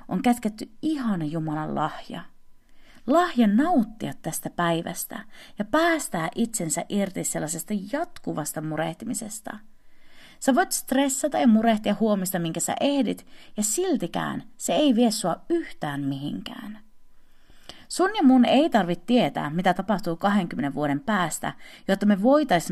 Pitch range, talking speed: 175-260 Hz, 125 wpm